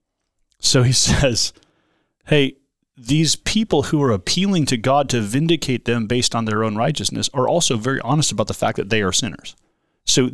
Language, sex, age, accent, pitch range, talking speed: English, male, 30-49, American, 105-135 Hz, 180 wpm